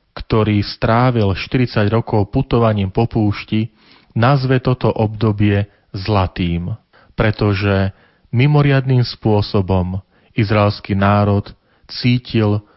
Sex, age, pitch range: male, 40-59, 100-115 Hz